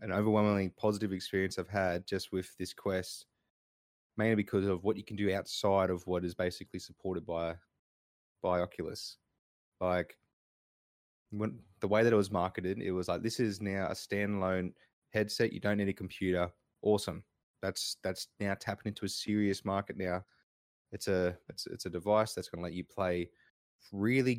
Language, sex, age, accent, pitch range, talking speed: English, male, 20-39, Australian, 90-105 Hz, 175 wpm